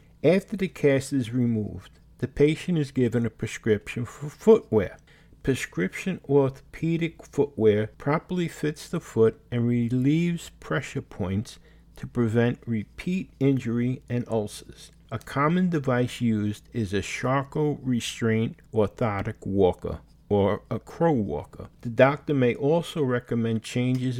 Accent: American